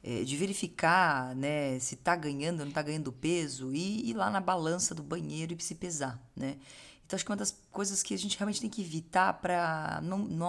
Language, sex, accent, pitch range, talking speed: Portuguese, female, Brazilian, 145-195 Hz, 215 wpm